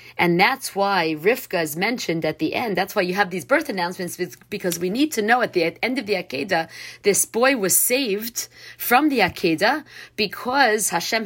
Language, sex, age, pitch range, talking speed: English, female, 40-59, 165-215 Hz, 190 wpm